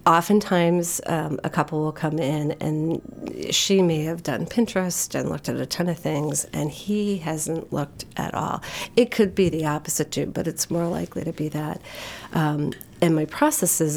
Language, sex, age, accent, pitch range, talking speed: English, female, 40-59, American, 155-175 Hz, 185 wpm